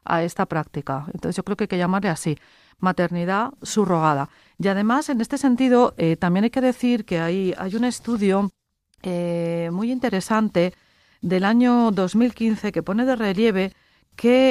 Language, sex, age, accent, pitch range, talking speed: Spanish, female, 40-59, Spanish, 175-225 Hz, 160 wpm